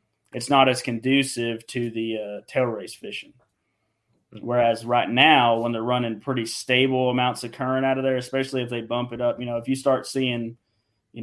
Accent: American